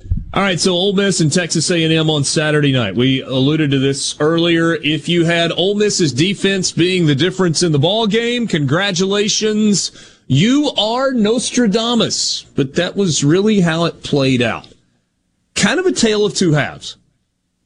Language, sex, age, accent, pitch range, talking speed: English, male, 30-49, American, 125-180 Hz, 165 wpm